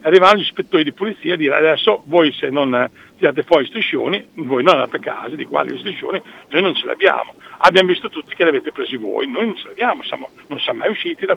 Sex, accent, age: male, native, 60-79